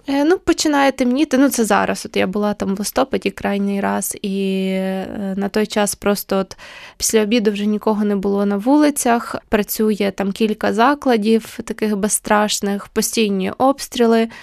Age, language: 20-39, Ukrainian